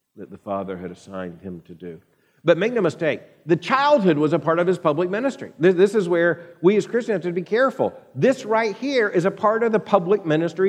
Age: 50-69